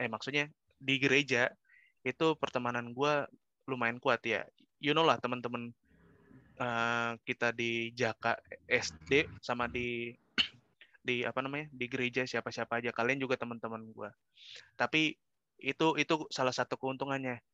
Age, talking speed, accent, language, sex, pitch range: 20-39, 135 wpm, native, Indonesian, male, 125-150 Hz